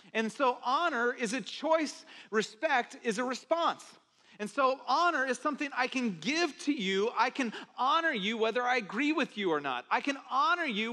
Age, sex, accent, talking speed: 40-59, male, American, 190 wpm